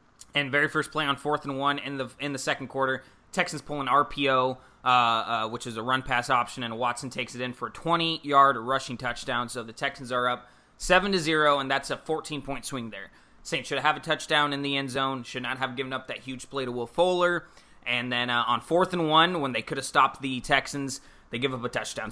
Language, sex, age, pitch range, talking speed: English, male, 20-39, 125-145 Hz, 240 wpm